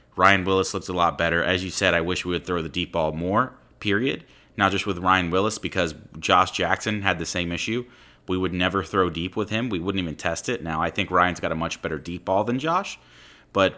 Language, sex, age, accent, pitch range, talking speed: English, male, 30-49, American, 80-95 Hz, 245 wpm